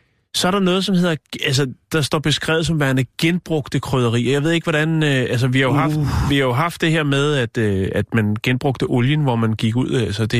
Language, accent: Danish, native